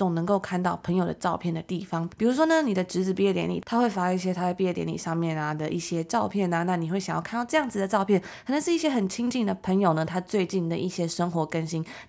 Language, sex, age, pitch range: Chinese, female, 20-39, 170-210 Hz